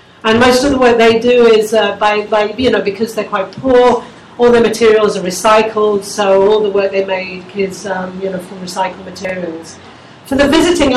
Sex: female